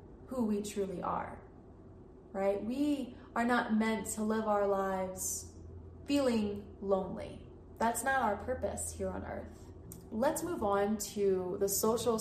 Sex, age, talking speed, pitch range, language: female, 20-39, 140 wpm, 195-260 Hz, English